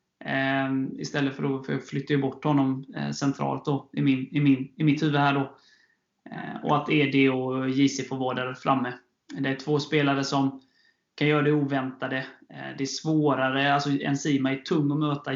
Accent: native